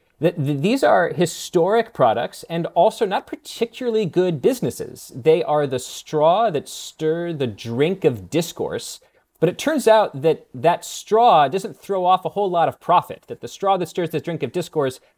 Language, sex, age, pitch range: English, male, 30-49, 135-195 Hz